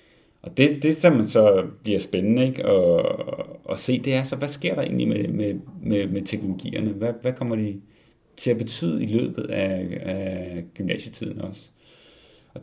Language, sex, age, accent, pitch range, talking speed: Danish, male, 30-49, native, 100-125 Hz, 175 wpm